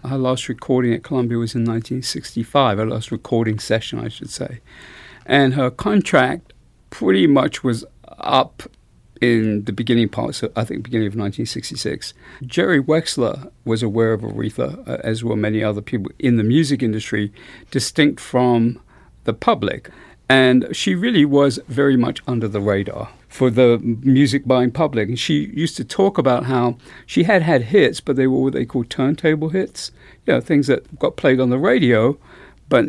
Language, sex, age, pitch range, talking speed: English, male, 50-69, 115-140 Hz, 170 wpm